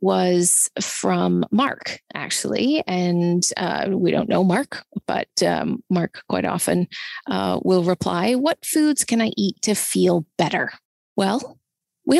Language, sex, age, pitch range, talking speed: English, female, 30-49, 185-255 Hz, 140 wpm